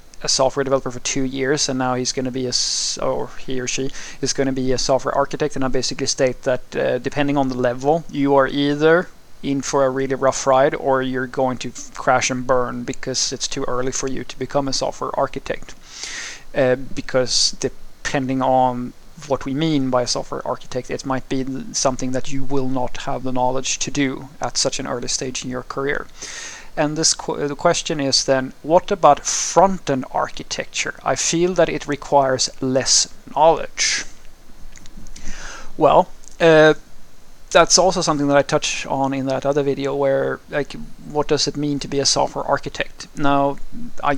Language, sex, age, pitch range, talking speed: English, male, 30-49, 130-145 Hz, 185 wpm